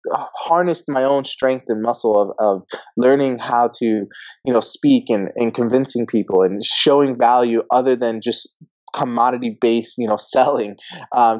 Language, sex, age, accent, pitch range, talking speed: English, male, 20-39, American, 120-145 Hz, 160 wpm